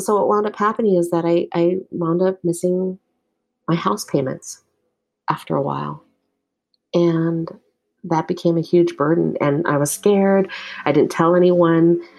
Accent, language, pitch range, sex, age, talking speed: American, English, 145-180 Hz, female, 40-59, 160 wpm